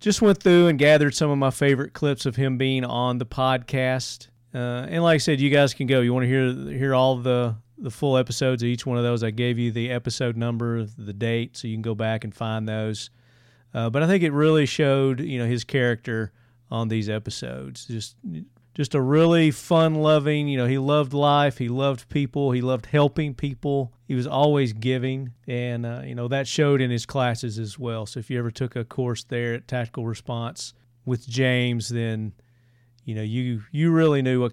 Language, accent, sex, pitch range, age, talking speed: English, American, male, 120-140 Hz, 40-59, 215 wpm